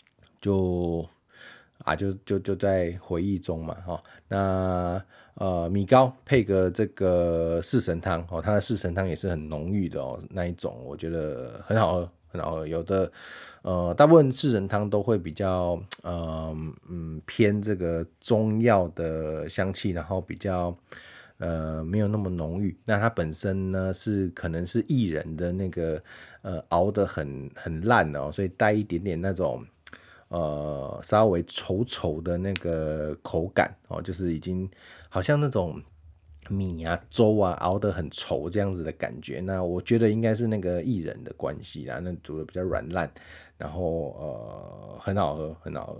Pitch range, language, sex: 85-100 Hz, Chinese, male